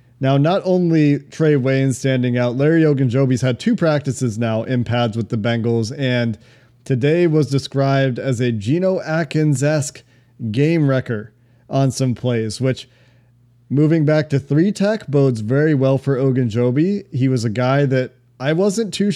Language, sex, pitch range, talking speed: English, male, 120-140 Hz, 155 wpm